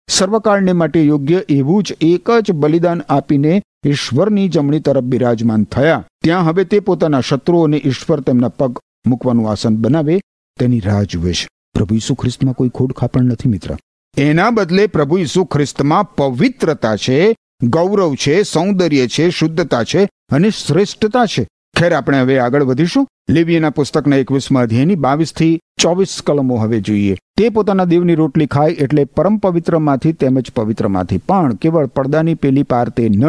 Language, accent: Gujarati, native